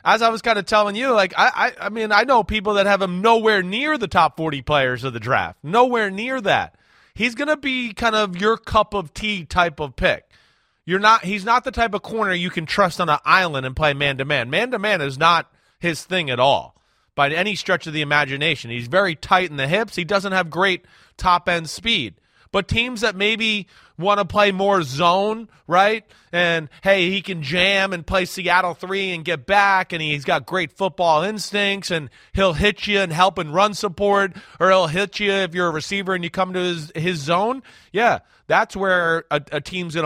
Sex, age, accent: male, 30-49, American